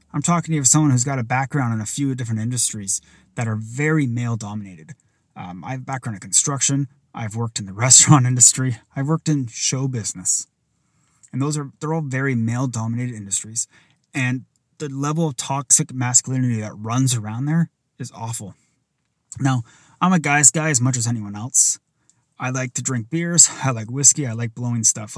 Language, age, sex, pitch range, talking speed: English, 30-49, male, 115-150 Hz, 190 wpm